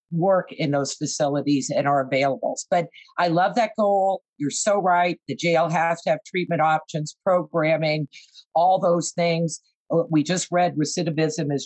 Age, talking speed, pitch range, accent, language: 50-69, 160 wpm, 155-200 Hz, American, English